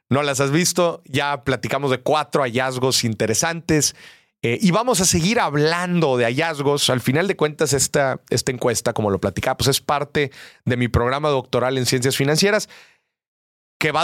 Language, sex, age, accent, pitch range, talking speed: Spanish, male, 30-49, Mexican, 115-165 Hz, 165 wpm